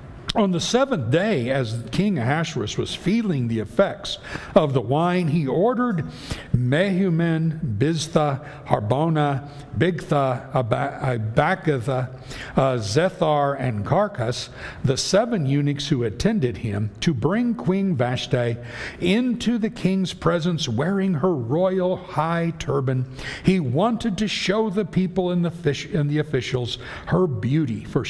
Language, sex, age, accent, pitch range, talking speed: English, male, 60-79, American, 130-185 Hz, 130 wpm